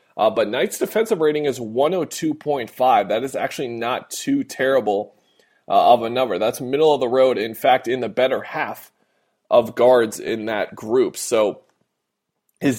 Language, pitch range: English, 115-145 Hz